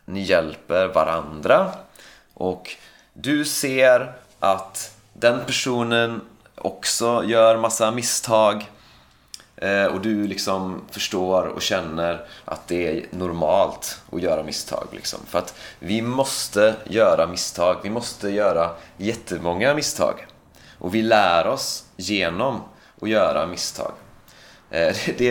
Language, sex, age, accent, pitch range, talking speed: Swedish, male, 30-49, native, 95-115 Hz, 110 wpm